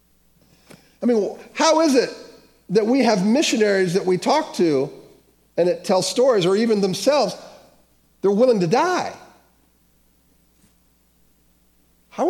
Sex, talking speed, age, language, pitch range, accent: male, 120 wpm, 50-69, English, 155-260 Hz, American